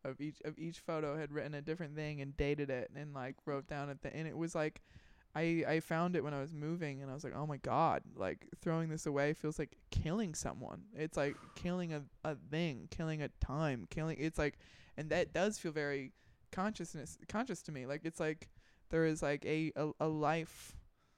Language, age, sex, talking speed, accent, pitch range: English, 20-39, male, 220 wpm, American, 145-165 Hz